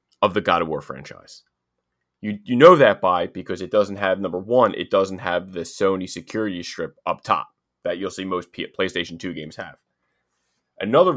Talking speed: 190 wpm